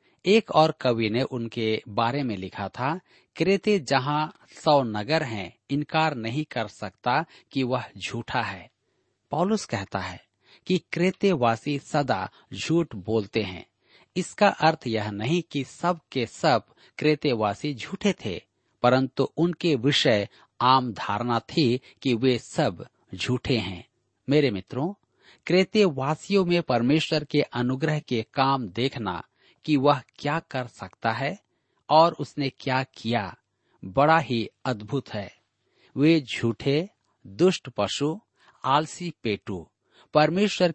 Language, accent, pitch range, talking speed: Hindi, native, 115-160 Hz, 125 wpm